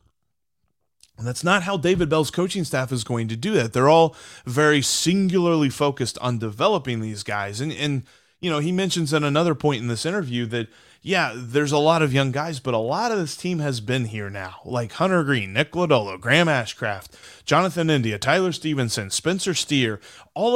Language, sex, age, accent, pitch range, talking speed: English, male, 30-49, American, 125-160 Hz, 195 wpm